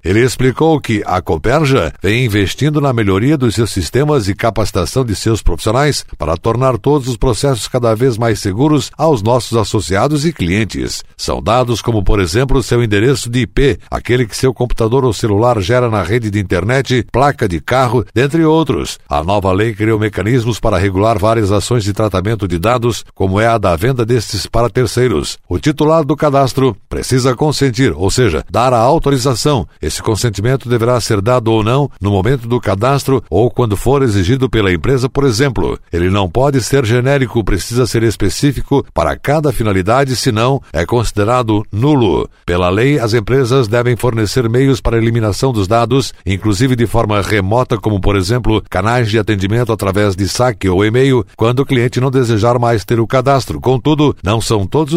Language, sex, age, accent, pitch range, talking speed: Portuguese, male, 60-79, Brazilian, 105-130 Hz, 175 wpm